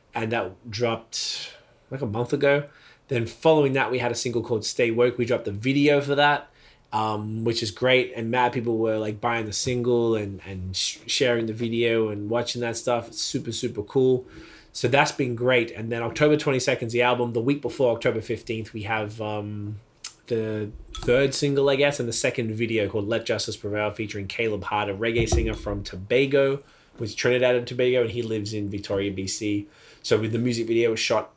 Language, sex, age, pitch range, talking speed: English, male, 20-39, 110-125 Hz, 200 wpm